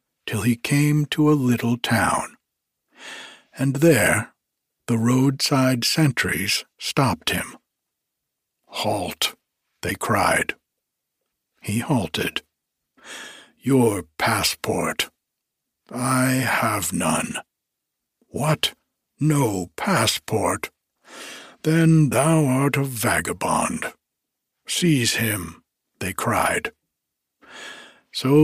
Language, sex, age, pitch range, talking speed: English, male, 60-79, 115-150 Hz, 80 wpm